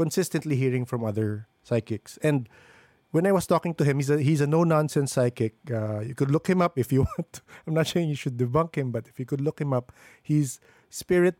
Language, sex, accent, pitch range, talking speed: English, male, Filipino, 125-160 Hz, 220 wpm